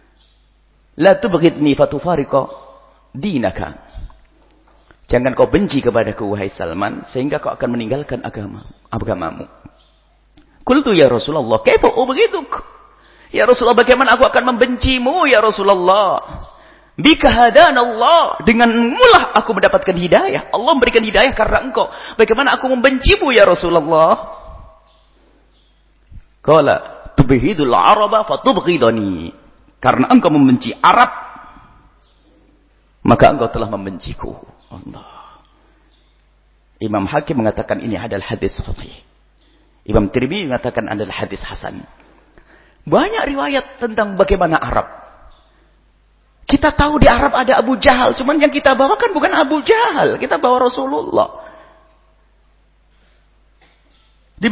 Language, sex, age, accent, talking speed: English, male, 40-59, Indonesian, 100 wpm